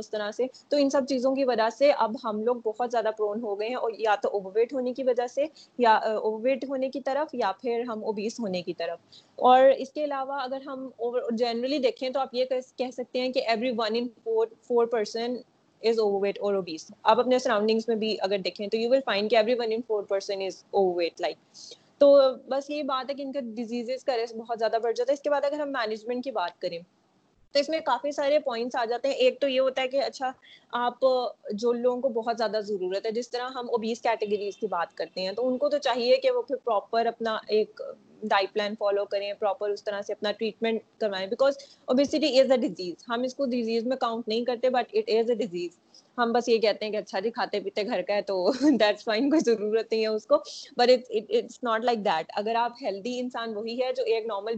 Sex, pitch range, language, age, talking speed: female, 215-265 Hz, Urdu, 20-39, 110 wpm